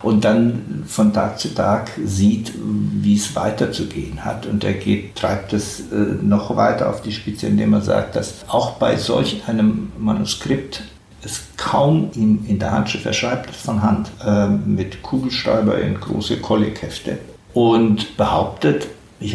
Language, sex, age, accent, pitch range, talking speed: German, male, 60-79, German, 105-110 Hz, 150 wpm